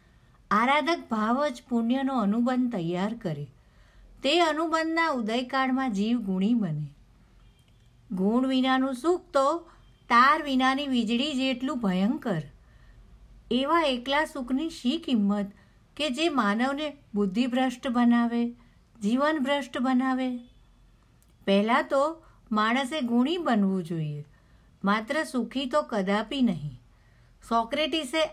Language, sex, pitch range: Gujarati, female, 200-270 Hz